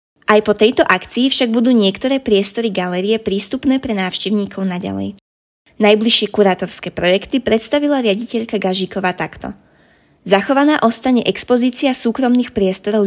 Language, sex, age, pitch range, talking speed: Slovak, female, 20-39, 190-245 Hz, 115 wpm